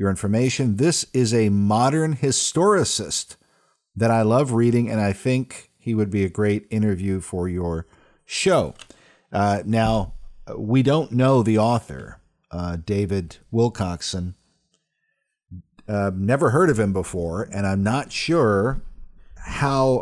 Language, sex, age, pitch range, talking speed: English, male, 50-69, 100-120 Hz, 130 wpm